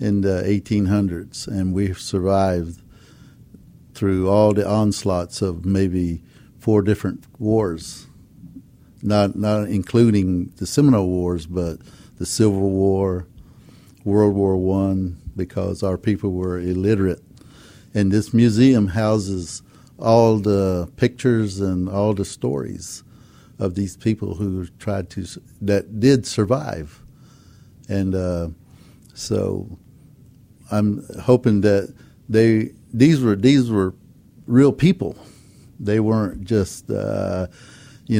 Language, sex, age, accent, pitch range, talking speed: English, male, 60-79, American, 95-115 Hz, 110 wpm